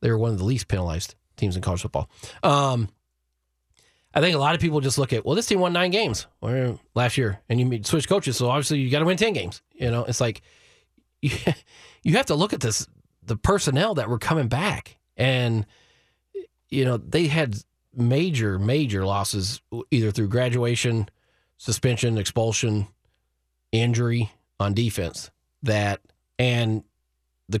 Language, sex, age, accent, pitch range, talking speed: English, male, 30-49, American, 100-130 Hz, 165 wpm